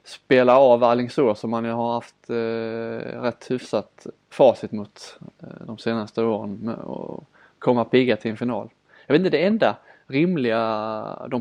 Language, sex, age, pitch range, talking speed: Swedish, male, 20-39, 105-120 Hz, 170 wpm